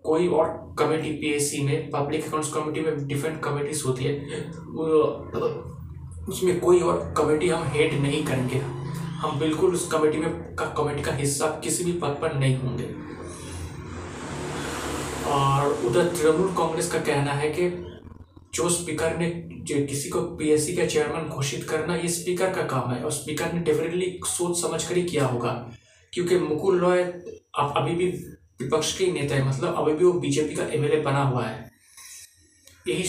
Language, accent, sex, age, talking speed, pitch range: Hindi, native, male, 20-39, 170 wpm, 140-170 Hz